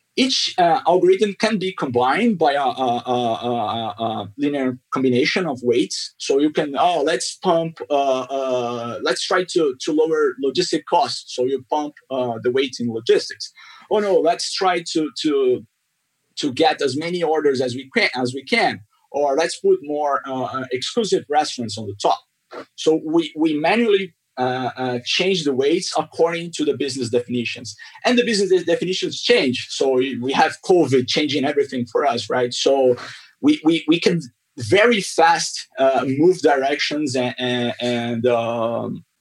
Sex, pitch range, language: male, 125-185 Hz, English